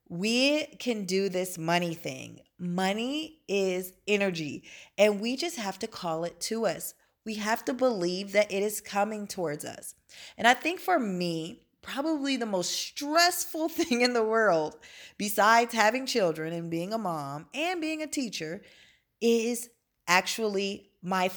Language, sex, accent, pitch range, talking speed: English, female, American, 180-235 Hz, 155 wpm